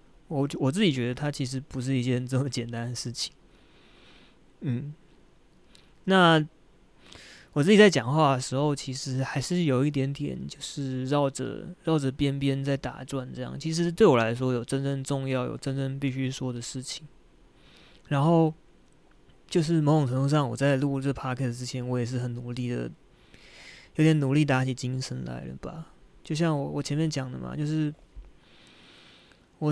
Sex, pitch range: male, 130-155 Hz